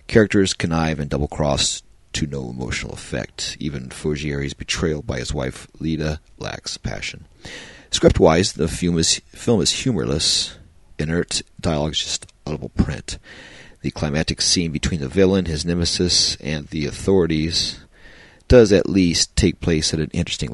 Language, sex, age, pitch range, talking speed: English, male, 40-59, 70-85 Hz, 145 wpm